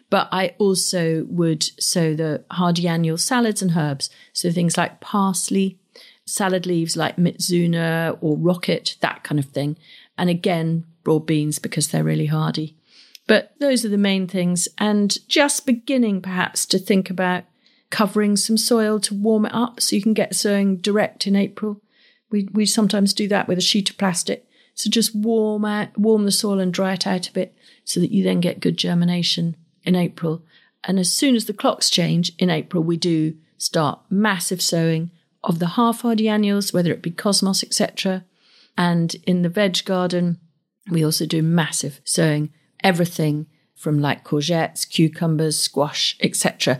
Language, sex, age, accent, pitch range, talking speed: English, female, 40-59, British, 165-210 Hz, 170 wpm